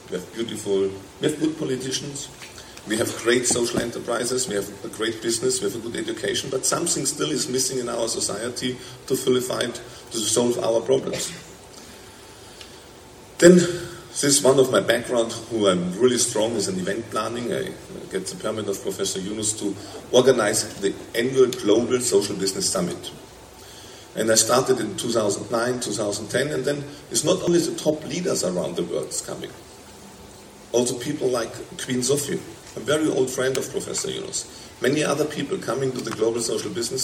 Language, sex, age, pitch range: Korean, male, 40-59, 115-150 Hz